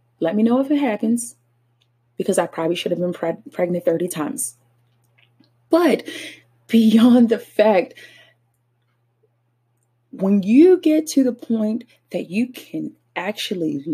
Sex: female